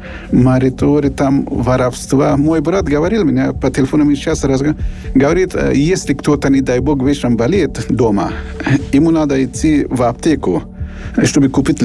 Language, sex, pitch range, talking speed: Russian, male, 120-150 Hz, 140 wpm